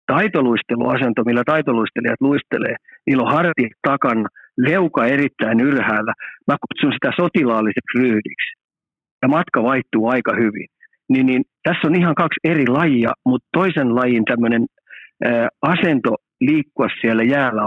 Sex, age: male, 50-69